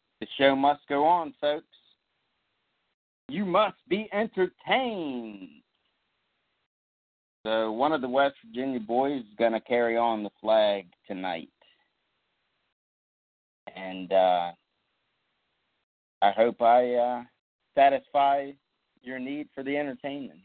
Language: English